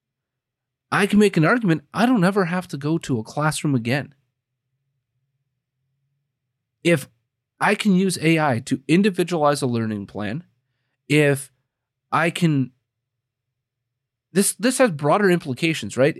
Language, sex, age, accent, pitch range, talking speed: English, male, 30-49, American, 125-155 Hz, 125 wpm